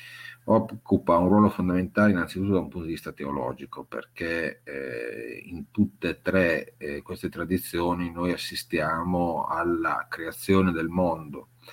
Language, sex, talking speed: Italian, male, 135 wpm